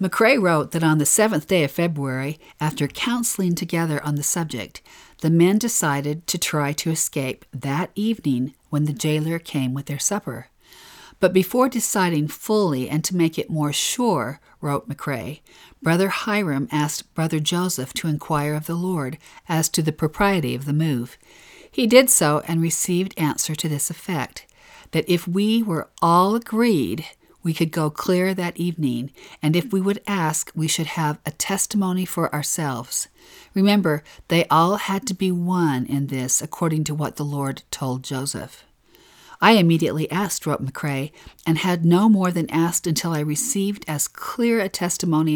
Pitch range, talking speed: 150-185 Hz, 170 wpm